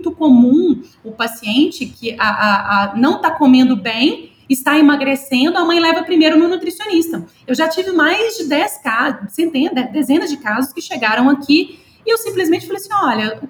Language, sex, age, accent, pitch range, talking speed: Portuguese, female, 30-49, Brazilian, 225-290 Hz, 180 wpm